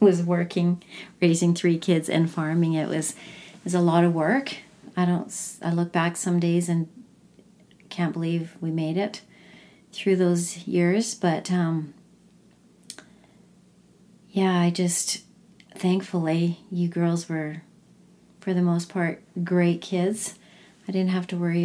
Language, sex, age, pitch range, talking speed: English, female, 40-59, 175-200 Hz, 140 wpm